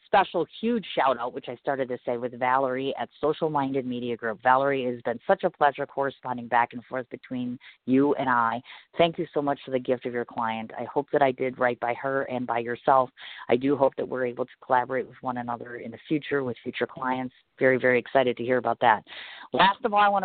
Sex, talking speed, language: female, 235 wpm, English